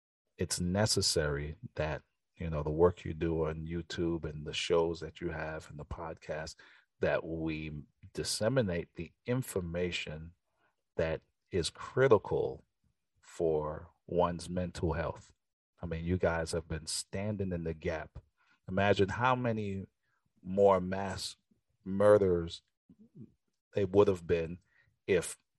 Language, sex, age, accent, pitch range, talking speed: English, male, 40-59, American, 80-95 Hz, 125 wpm